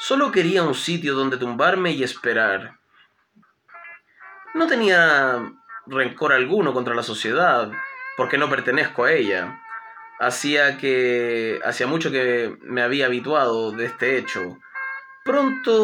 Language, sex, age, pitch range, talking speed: Spanish, male, 20-39, 130-210 Hz, 115 wpm